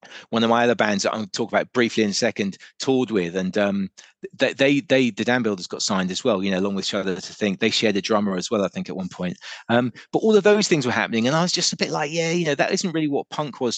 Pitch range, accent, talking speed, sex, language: 105-135 Hz, British, 310 wpm, male, English